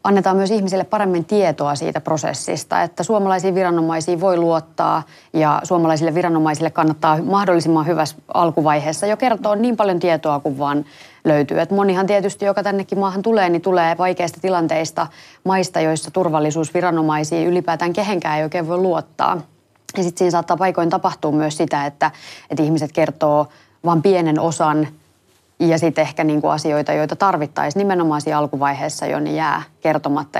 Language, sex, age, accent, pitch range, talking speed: Finnish, female, 30-49, native, 155-180 Hz, 150 wpm